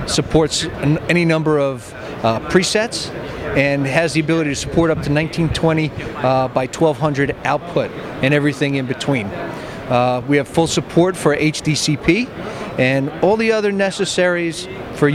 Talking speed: 145 wpm